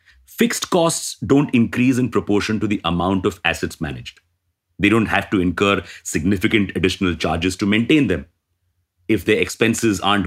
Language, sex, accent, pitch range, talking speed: English, male, Indian, 90-125 Hz, 160 wpm